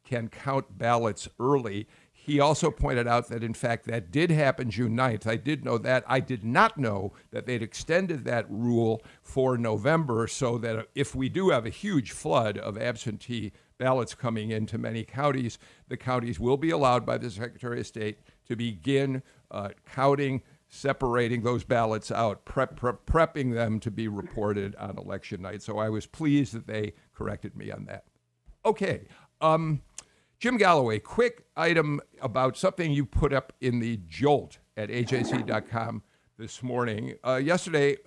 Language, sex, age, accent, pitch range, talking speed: English, male, 50-69, American, 115-140 Hz, 160 wpm